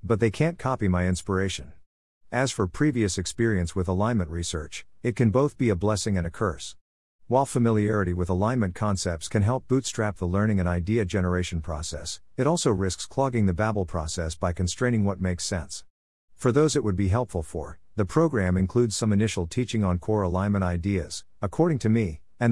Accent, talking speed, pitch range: American, 185 wpm, 90-115 Hz